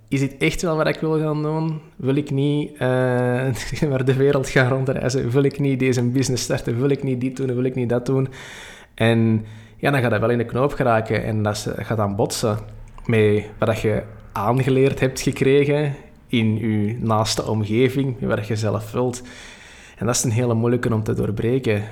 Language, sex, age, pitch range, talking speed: Dutch, male, 20-39, 110-130 Hz, 195 wpm